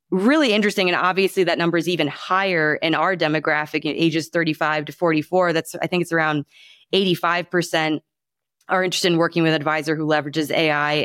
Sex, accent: female, American